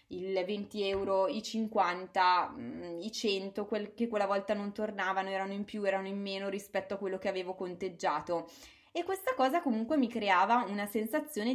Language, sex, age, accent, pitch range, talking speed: Italian, female, 20-39, native, 190-255 Hz, 165 wpm